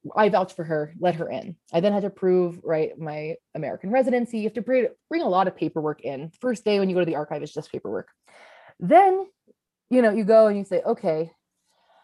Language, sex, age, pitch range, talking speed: English, female, 20-39, 170-220 Hz, 225 wpm